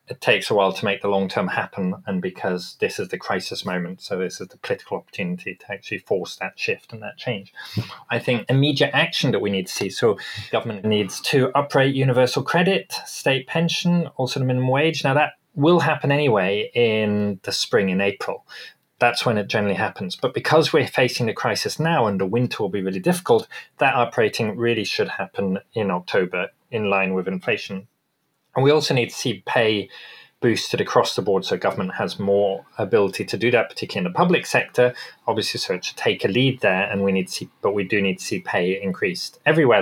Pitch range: 100-145 Hz